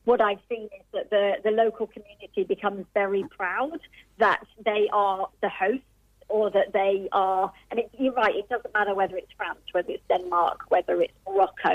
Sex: female